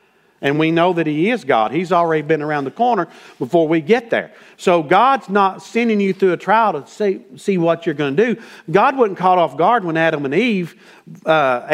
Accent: American